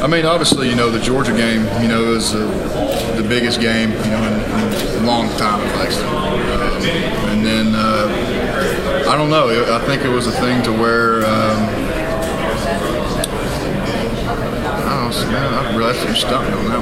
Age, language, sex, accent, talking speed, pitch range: 20-39, English, male, American, 185 wpm, 110-115 Hz